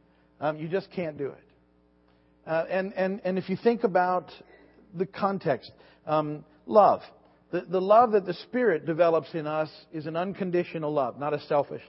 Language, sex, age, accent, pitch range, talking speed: English, male, 40-59, American, 130-175 Hz, 170 wpm